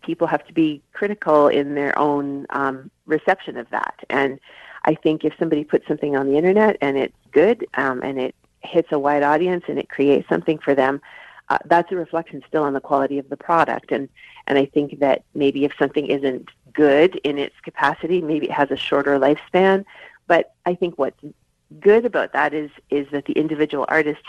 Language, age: English, 40-59